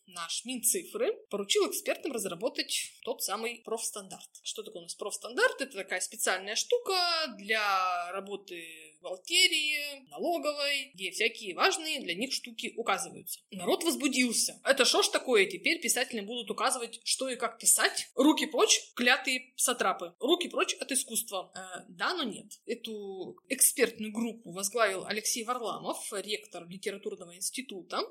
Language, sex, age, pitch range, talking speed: Russian, female, 20-39, 200-290 Hz, 135 wpm